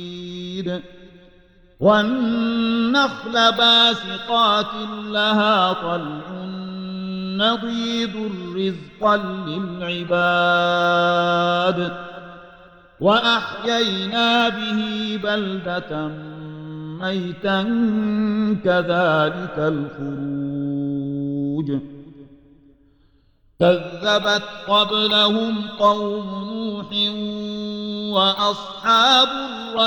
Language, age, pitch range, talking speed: Arabic, 50-69, 175-210 Hz, 35 wpm